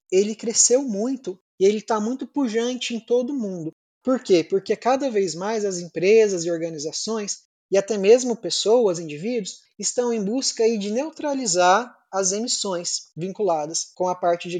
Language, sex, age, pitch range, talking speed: Portuguese, male, 20-39, 180-225 Hz, 165 wpm